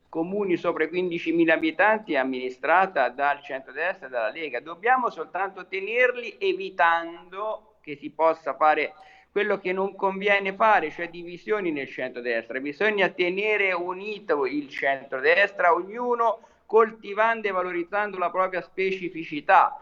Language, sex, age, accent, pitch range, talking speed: Italian, male, 50-69, native, 165-230 Hz, 120 wpm